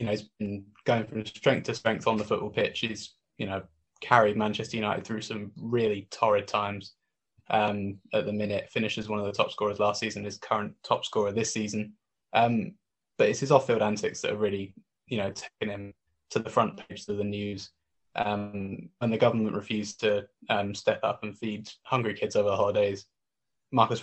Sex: male